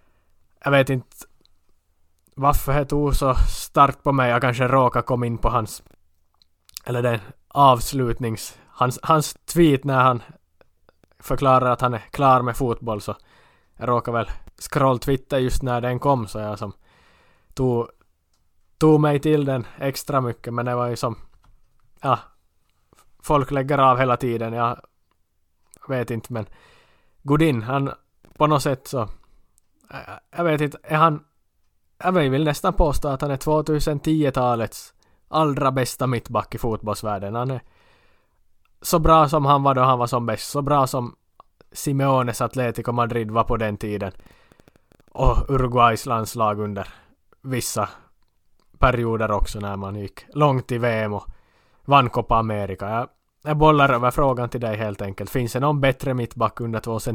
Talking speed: 150 wpm